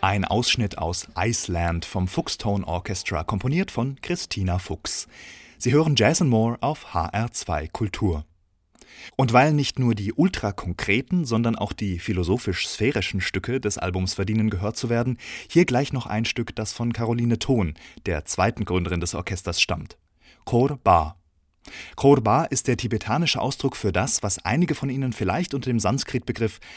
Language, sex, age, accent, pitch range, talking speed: German, male, 30-49, German, 95-125 Hz, 150 wpm